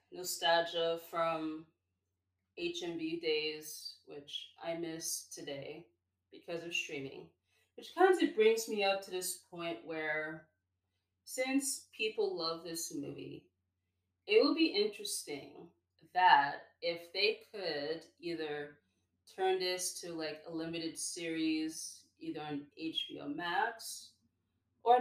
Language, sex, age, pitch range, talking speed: English, female, 20-39, 150-250 Hz, 115 wpm